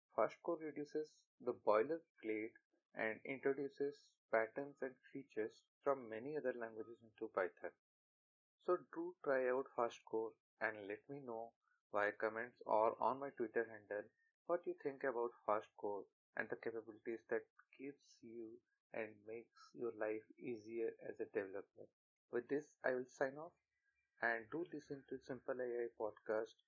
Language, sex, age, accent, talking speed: English, male, 30-49, Indian, 140 wpm